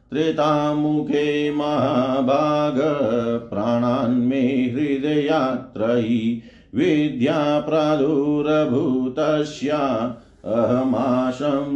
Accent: native